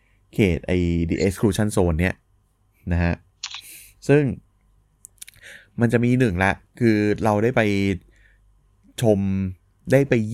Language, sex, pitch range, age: Thai, male, 95-115 Hz, 20-39